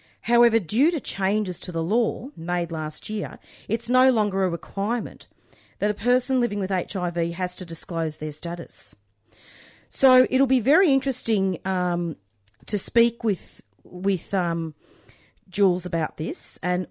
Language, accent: English, Australian